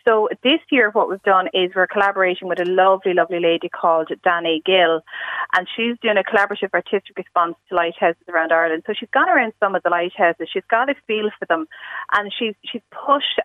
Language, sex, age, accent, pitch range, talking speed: English, female, 30-49, Irish, 180-230 Hz, 205 wpm